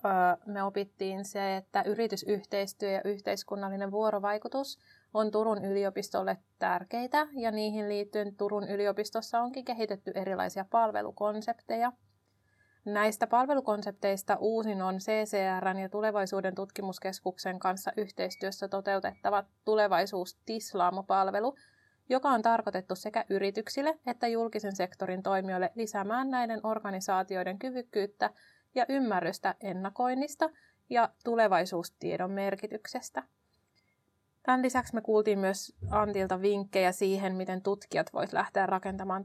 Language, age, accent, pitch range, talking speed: Finnish, 30-49, native, 195-220 Hz, 100 wpm